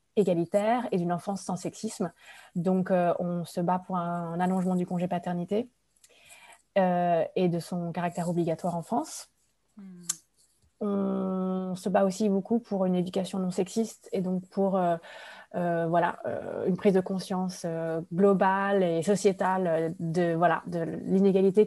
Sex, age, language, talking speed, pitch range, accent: female, 20-39, French, 150 wpm, 170-195 Hz, French